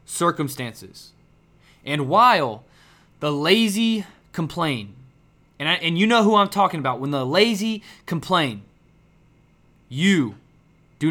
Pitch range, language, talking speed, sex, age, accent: 145-180 Hz, English, 115 wpm, male, 20-39, American